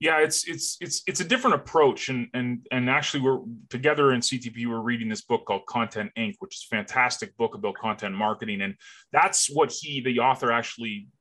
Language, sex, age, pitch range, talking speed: English, male, 30-49, 125-185 Hz, 205 wpm